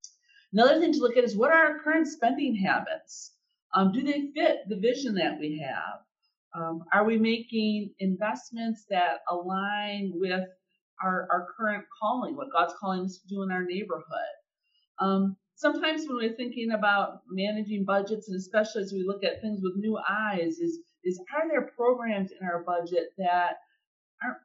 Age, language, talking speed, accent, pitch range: 50-69, English, 170 wpm, American, 190-285 Hz